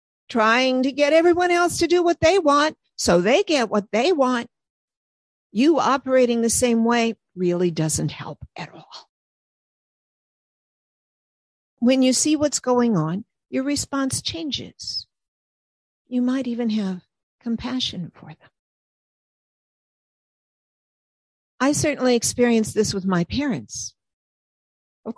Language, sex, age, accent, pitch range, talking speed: English, female, 50-69, American, 195-270 Hz, 120 wpm